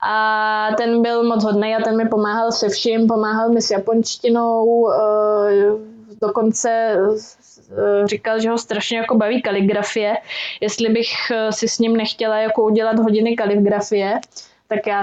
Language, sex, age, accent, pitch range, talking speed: Czech, female, 20-39, native, 210-225 Hz, 140 wpm